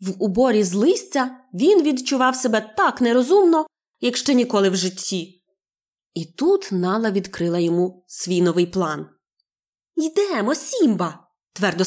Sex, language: female, Ukrainian